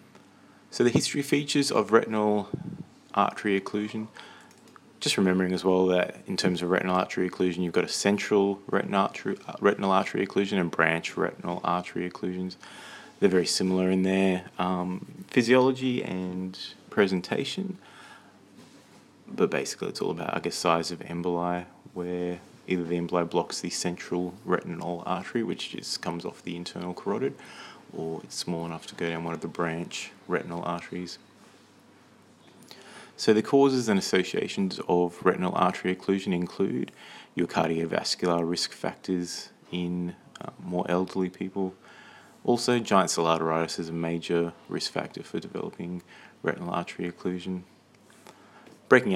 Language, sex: English, male